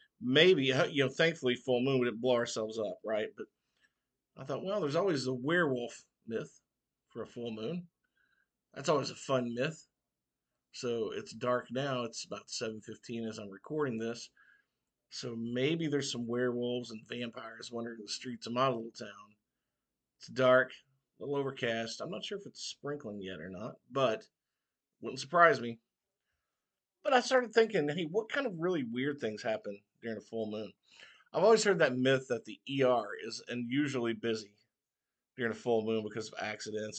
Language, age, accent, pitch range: English, 50-69, American, 110-145 Hz